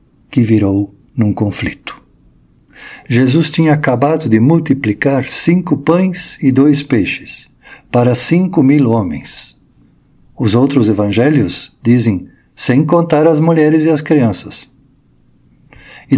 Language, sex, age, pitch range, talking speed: Portuguese, male, 60-79, 115-150 Hz, 110 wpm